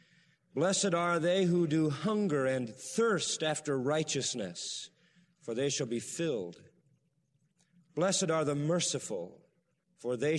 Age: 40-59